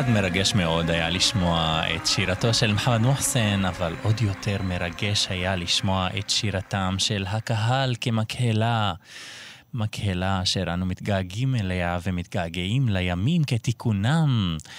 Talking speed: 120 wpm